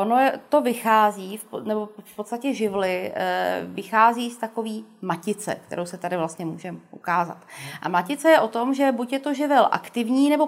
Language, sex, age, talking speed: Czech, female, 30-49, 160 wpm